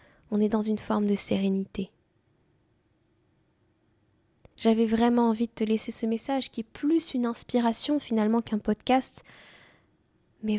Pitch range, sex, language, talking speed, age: 200-235 Hz, female, French, 135 wpm, 10-29